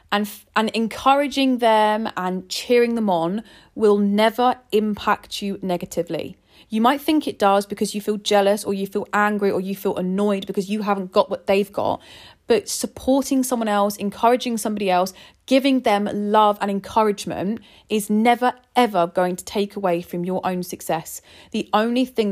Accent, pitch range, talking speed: British, 190-225 Hz, 170 wpm